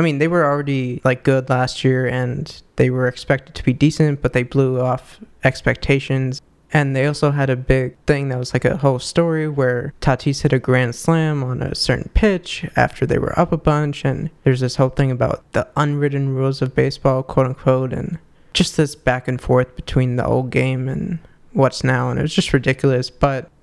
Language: English